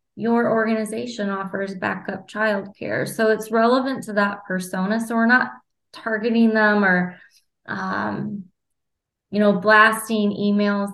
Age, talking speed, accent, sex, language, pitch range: 20-39, 125 wpm, American, female, English, 185-215 Hz